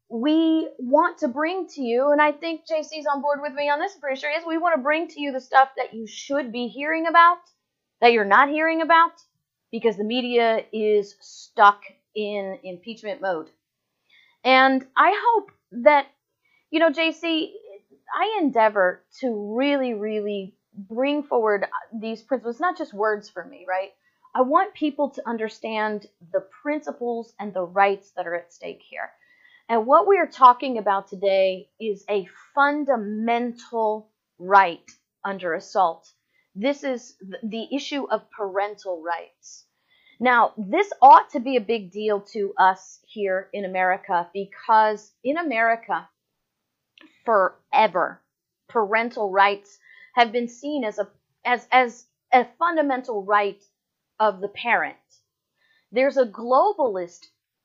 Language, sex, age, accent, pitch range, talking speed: English, female, 30-49, American, 205-290 Hz, 145 wpm